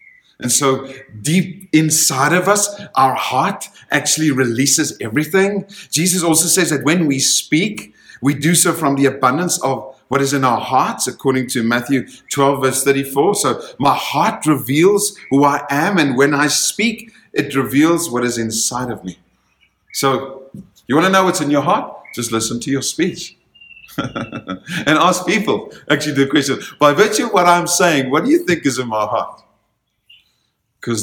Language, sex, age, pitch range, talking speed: English, male, 50-69, 120-170 Hz, 170 wpm